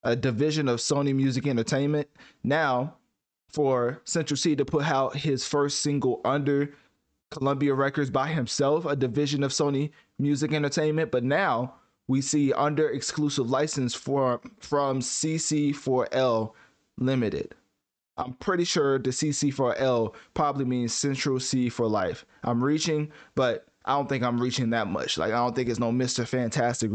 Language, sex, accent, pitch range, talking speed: English, male, American, 120-150 Hz, 145 wpm